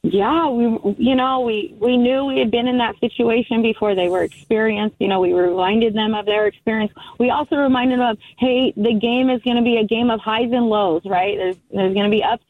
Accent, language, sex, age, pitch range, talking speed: American, English, female, 30-49, 195-235 Hz, 240 wpm